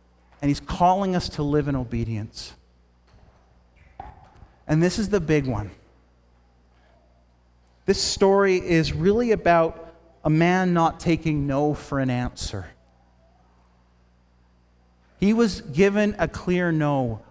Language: English